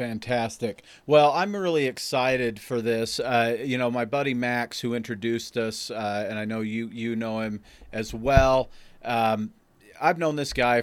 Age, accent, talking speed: 40-59, American, 170 wpm